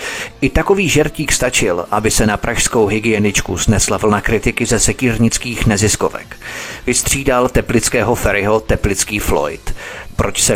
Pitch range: 100-120 Hz